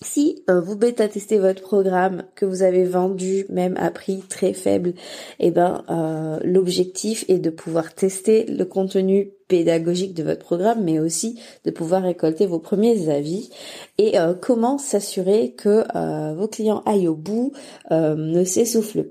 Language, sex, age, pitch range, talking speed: French, female, 20-39, 175-220 Hz, 165 wpm